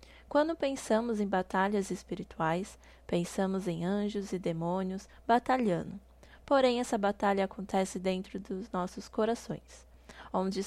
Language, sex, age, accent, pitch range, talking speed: Portuguese, female, 10-29, Brazilian, 185-225 Hz, 110 wpm